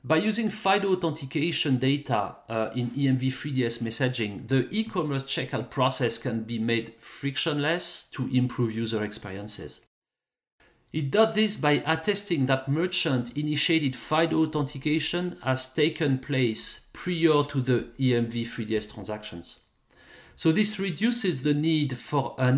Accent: French